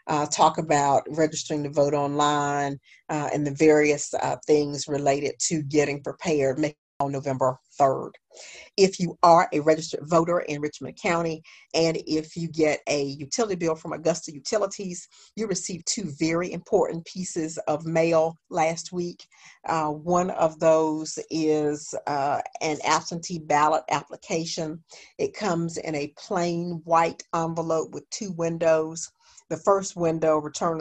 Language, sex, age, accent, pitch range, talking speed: English, female, 50-69, American, 155-175 Hz, 140 wpm